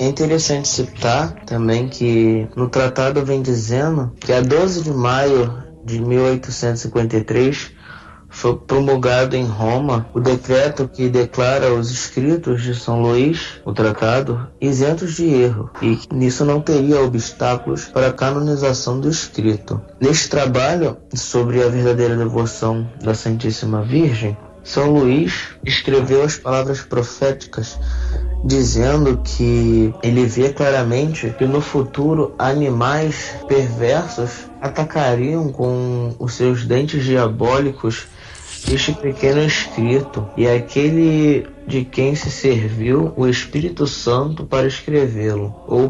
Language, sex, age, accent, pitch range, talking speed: Portuguese, male, 20-39, Brazilian, 115-140 Hz, 120 wpm